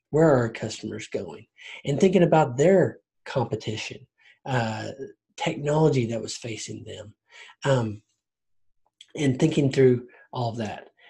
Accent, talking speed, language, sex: American, 125 wpm, English, male